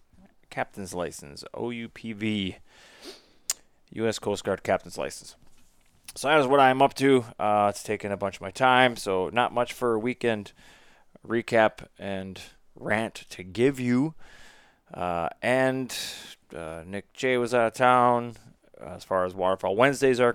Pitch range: 100-130 Hz